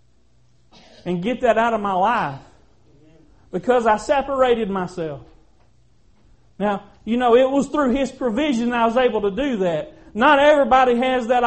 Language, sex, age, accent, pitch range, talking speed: English, male, 40-59, American, 200-260 Hz, 150 wpm